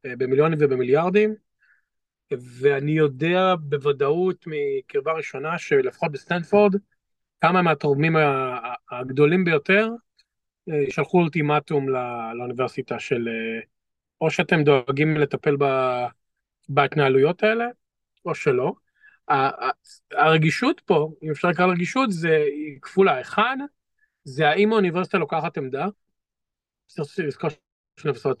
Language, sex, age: Hebrew, male, 40-59